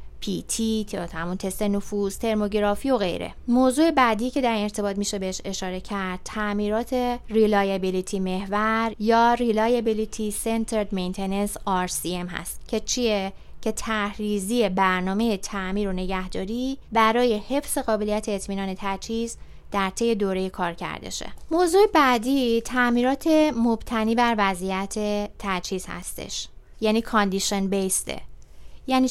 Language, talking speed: Persian, 110 wpm